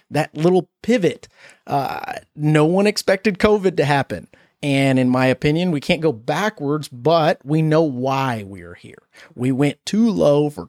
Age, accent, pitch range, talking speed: 30-49, American, 135-175 Hz, 165 wpm